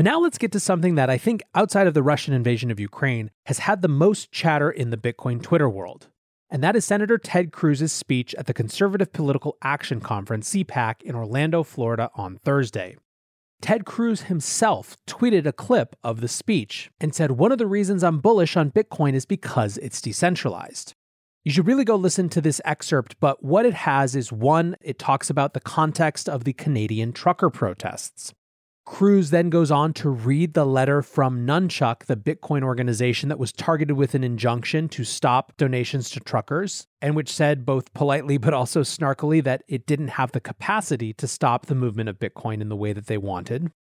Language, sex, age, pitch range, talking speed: English, male, 30-49, 120-170 Hz, 195 wpm